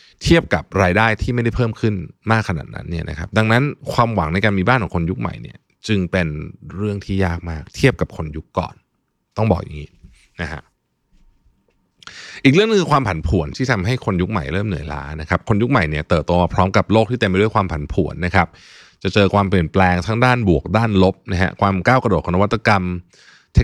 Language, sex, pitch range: Thai, male, 90-120 Hz